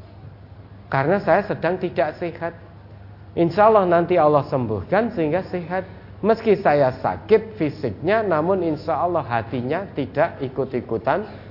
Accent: native